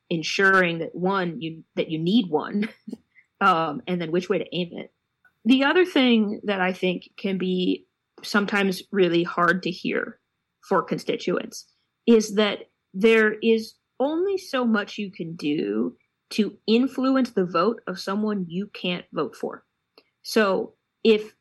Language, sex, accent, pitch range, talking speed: English, female, American, 180-225 Hz, 150 wpm